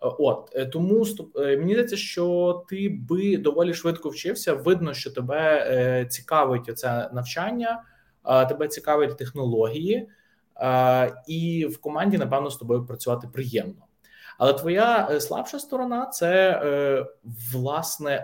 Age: 20-39